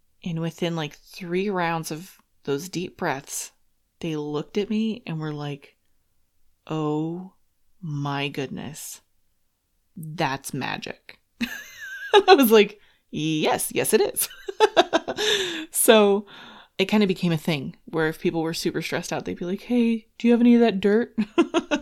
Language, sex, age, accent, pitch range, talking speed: English, female, 20-39, American, 150-200 Hz, 145 wpm